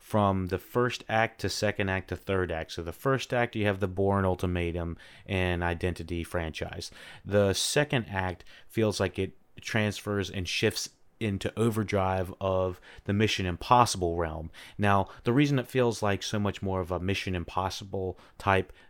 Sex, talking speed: male, 165 wpm